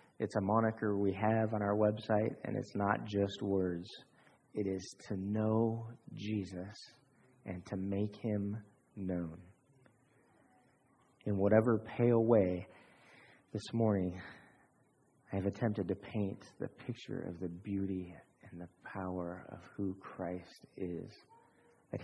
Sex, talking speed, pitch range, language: male, 130 wpm, 95-110 Hz, English